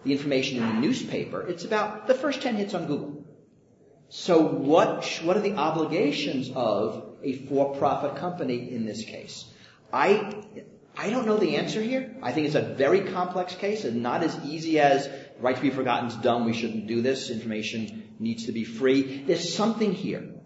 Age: 40-59